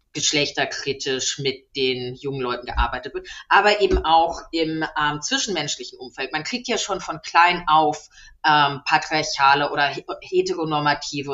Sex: female